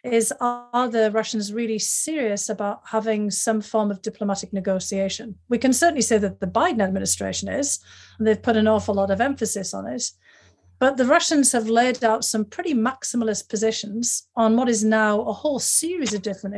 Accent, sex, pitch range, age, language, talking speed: British, female, 205-240 Hz, 40-59, English, 185 wpm